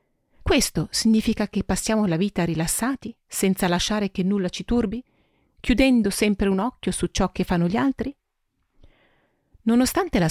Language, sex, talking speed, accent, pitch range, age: Italian, female, 145 wpm, native, 170-225 Hz, 40-59